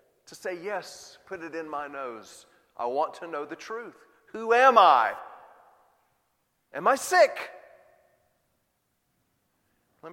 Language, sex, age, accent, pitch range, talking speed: English, male, 40-59, American, 130-180 Hz, 125 wpm